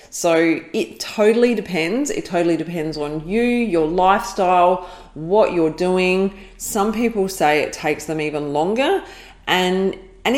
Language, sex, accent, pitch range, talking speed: English, female, Australian, 155-190 Hz, 140 wpm